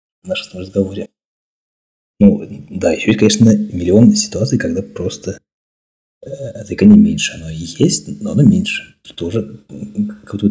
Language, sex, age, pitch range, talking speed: Russian, male, 30-49, 95-115 Hz, 130 wpm